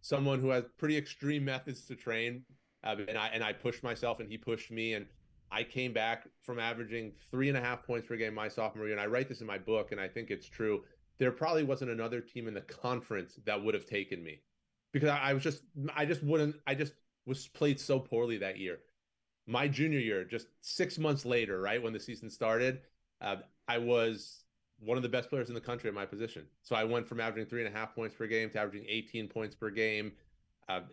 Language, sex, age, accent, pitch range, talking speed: English, male, 30-49, American, 105-130 Hz, 235 wpm